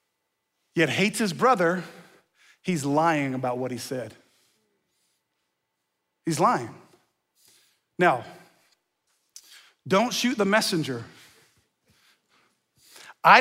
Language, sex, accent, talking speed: English, male, American, 80 wpm